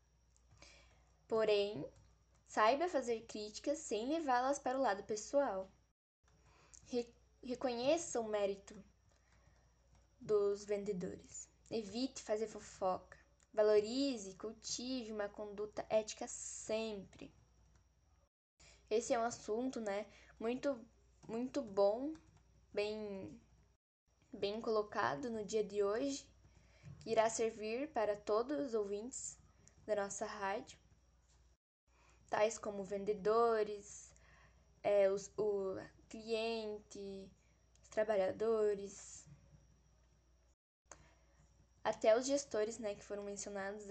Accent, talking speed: Brazilian, 90 wpm